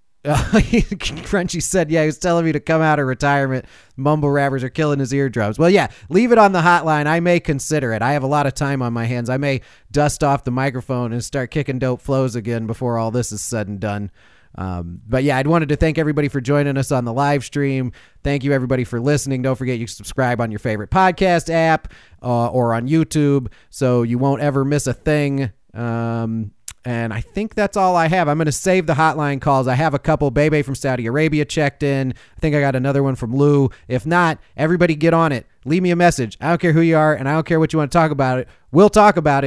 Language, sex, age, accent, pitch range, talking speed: English, male, 30-49, American, 125-155 Hz, 245 wpm